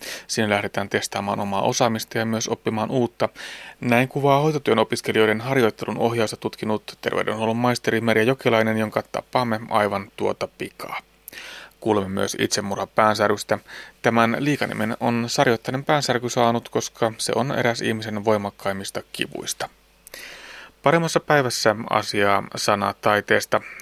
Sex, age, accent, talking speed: male, 30-49, native, 120 wpm